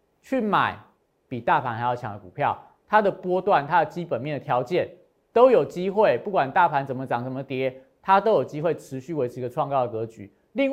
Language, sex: Chinese, male